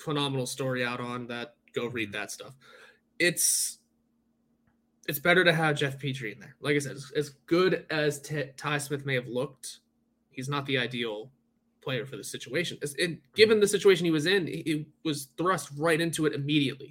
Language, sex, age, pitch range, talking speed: English, male, 20-39, 130-160 Hz, 190 wpm